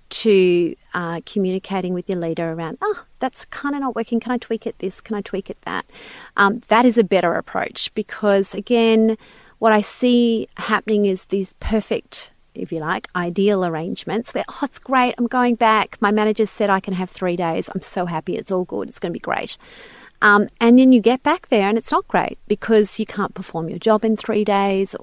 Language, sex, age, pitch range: English, female, 30-49, 185-235 Hz